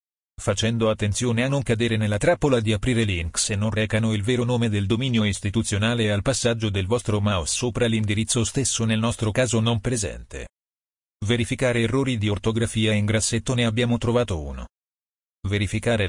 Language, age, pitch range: Italian, 40-59, 105-120 Hz